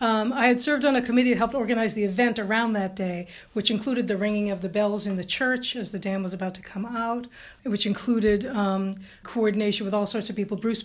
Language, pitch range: English, 195-225 Hz